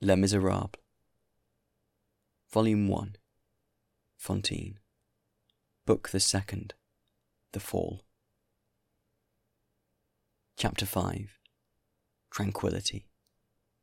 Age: 20-39